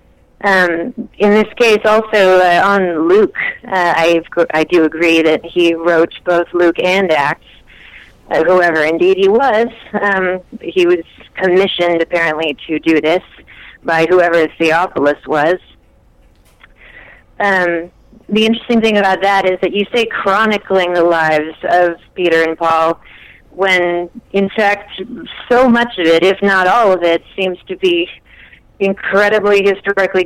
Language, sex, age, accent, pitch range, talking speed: English, female, 30-49, American, 170-195 Hz, 140 wpm